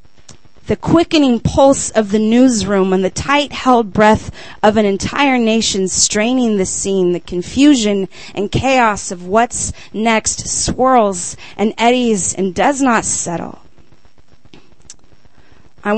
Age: 30-49